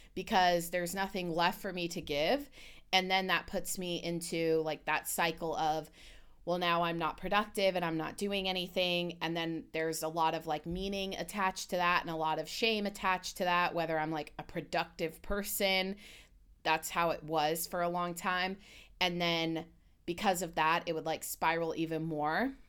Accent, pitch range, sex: American, 165-225 Hz, female